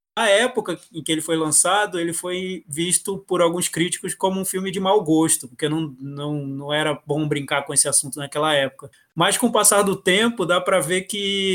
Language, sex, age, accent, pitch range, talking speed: Portuguese, male, 20-39, Brazilian, 155-195 Hz, 215 wpm